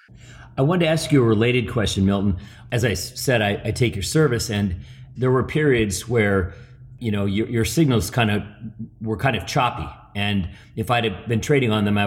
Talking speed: 210 wpm